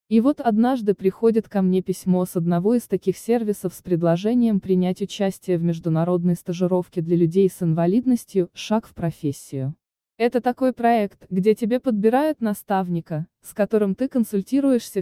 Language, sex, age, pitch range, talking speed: Russian, female, 20-39, 175-220 Hz, 150 wpm